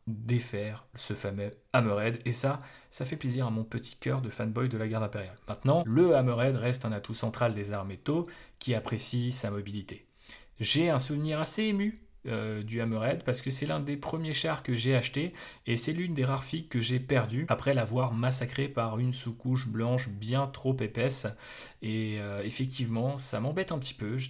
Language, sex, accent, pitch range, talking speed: French, male, French, 110-130 Hz, 195 wpm